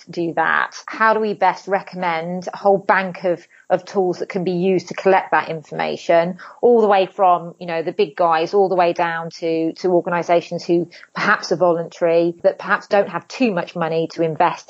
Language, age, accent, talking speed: English, 30-49, British, 205 wpm